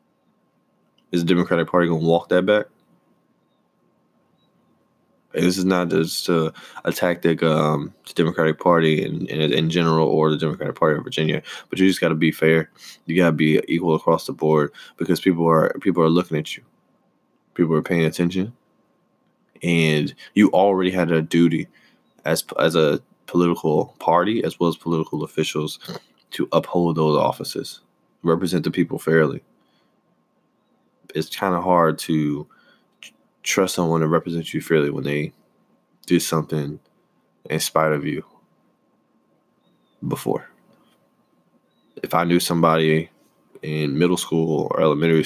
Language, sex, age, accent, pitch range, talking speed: English, male, 20-39, American, 80-85 Hz, 145 wpm